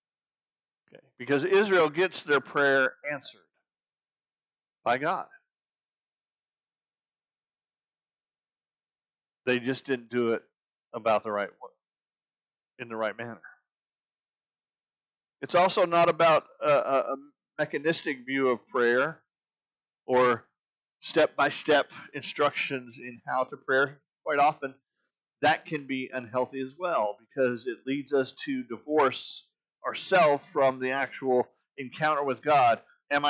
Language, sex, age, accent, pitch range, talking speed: English, male, 50-69, American, 125-155 Hz, 110 wpm